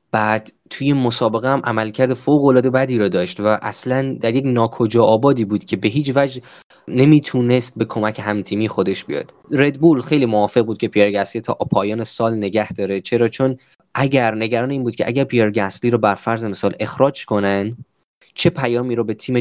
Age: 20-39